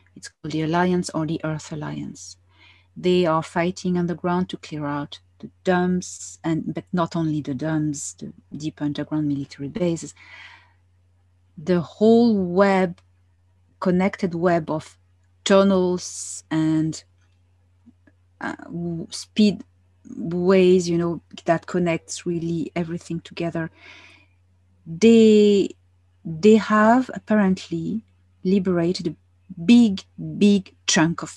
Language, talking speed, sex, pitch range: English, 105 wpm, female, 140-195 Hz